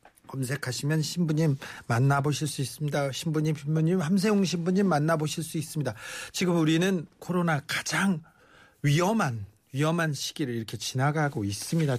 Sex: male